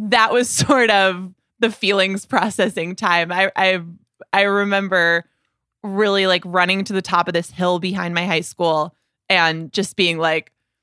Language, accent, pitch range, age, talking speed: English, American, 175-210 Hz, 20-39, 160 wpm